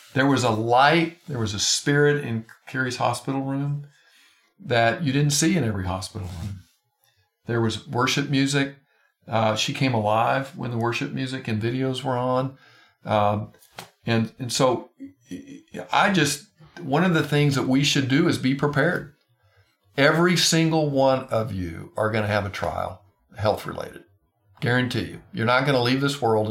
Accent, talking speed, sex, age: American, 165 wpm, male, 50-69